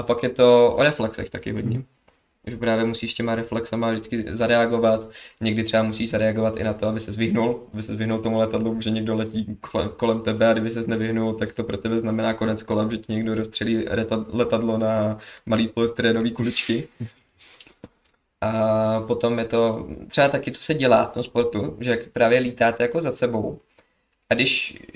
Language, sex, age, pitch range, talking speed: Czech, male, 20-39, 115-130 Hz, 175 wpm